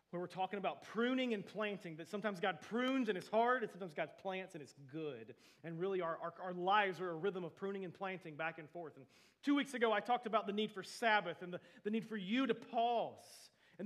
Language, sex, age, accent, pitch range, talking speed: English, male, 30-49, American, 170-225 Hz, 245 wpm